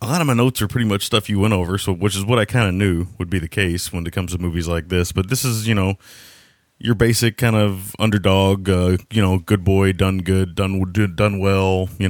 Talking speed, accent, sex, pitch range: 265 wpm, American, male, 90-115 Hz